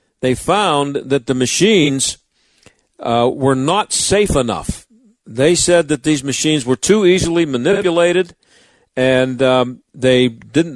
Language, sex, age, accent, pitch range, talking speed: English, male, 50-69, American, 125-155 Hz, 130 wpm